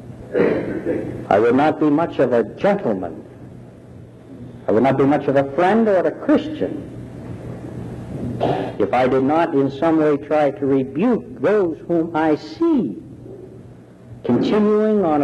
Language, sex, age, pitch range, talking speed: English, male, 60-79, 150-225 Hz, 140 wpm